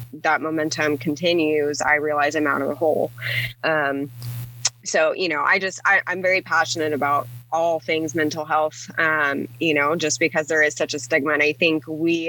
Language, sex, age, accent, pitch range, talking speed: English, female, 20-39, American, 145-165 Hz, 185 wpm